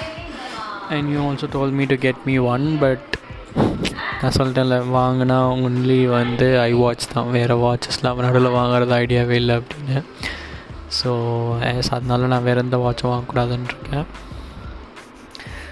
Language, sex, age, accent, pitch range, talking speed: Tamil, male, 20-39, native, 125-140 Hz, 130 wpm